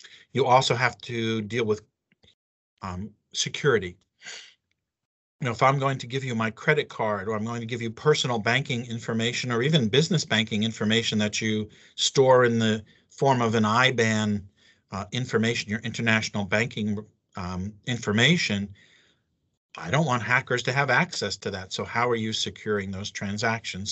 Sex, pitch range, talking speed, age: male, 110-135 Hz, 165 wpm, 50-69